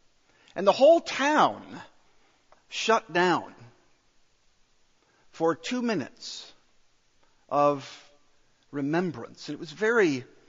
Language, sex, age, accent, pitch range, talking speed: English, male, 50-69, American, 155-225 Hz, 80 wpm